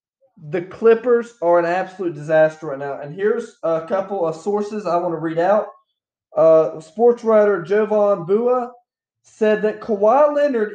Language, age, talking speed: English, 20-39, 155 wpm